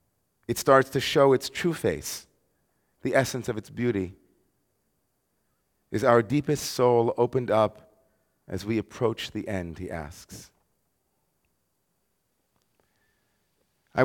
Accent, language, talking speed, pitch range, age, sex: American, English, 110 wpm, 105-130 Hz, 30-49, male